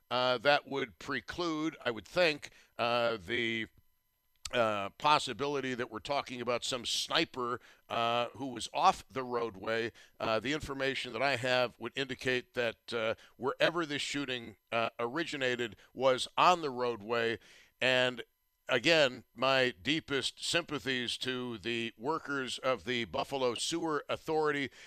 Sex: male